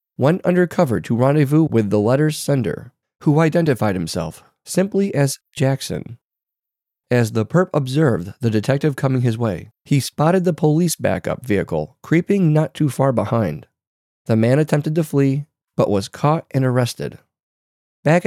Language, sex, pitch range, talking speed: English, male, 115-165 Hz, 150 wpm